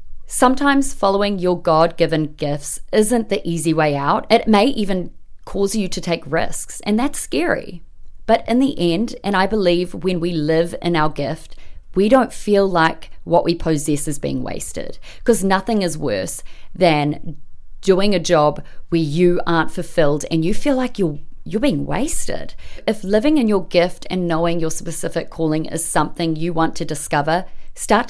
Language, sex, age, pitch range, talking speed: English, female, 30-49, 165-230 Hz, 175 wpm